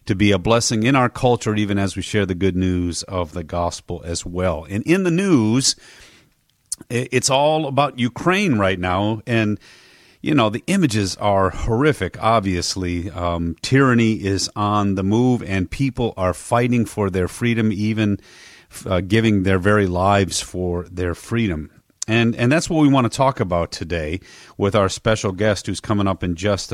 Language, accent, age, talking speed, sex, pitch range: English, American, 40-59, 175 wpm, male, 95-120 Hz